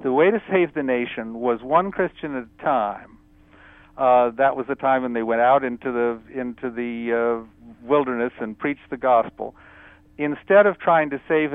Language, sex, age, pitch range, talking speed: English, male, 50-69, 115-145 Hz, 185 wpm